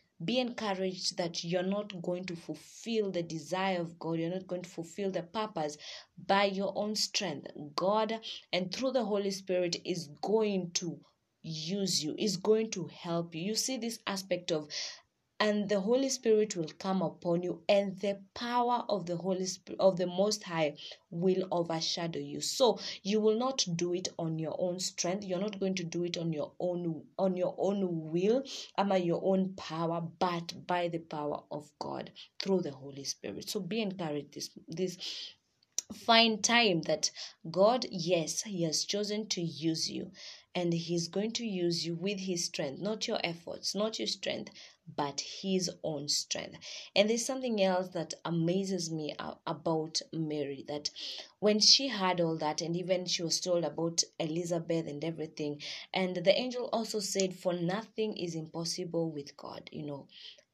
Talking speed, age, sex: 175 wpm, 20-39, female